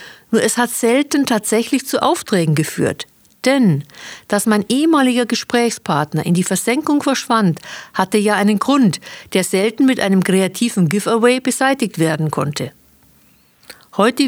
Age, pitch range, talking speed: 50-69, 185-245 Hz, 130 wpm